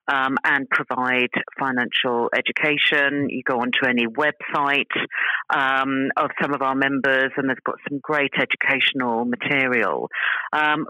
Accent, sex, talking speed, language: British, female, 130 wpm, English